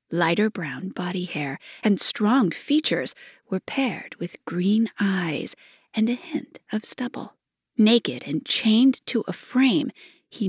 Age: 40-59